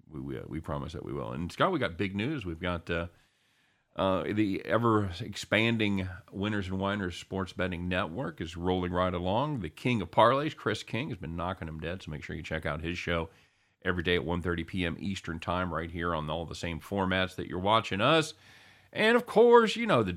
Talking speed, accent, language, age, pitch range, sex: 220 wpm, American, English, 40-59, 85-110 Hz, male